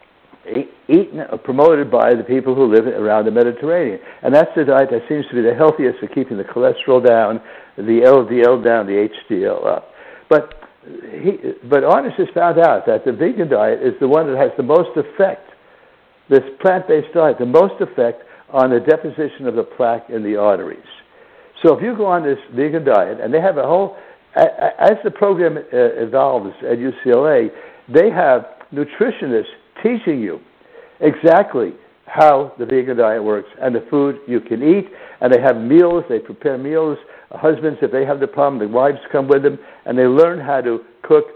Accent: American